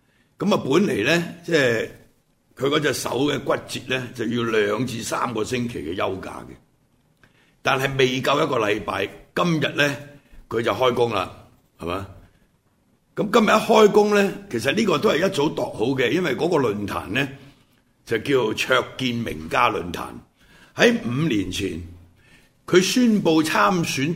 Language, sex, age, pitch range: Chinese, male, 70-89, 115-180 Hz